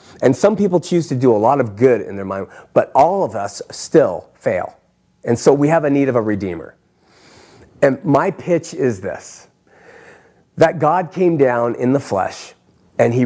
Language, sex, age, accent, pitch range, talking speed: English, male, 40-59, American, 110-160 Hz, 190 wpm